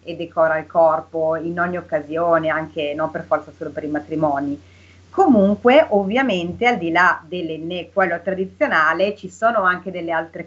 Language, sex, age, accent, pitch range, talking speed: Italian, female, 30-49, native, 165-200 Hz, 160 wpm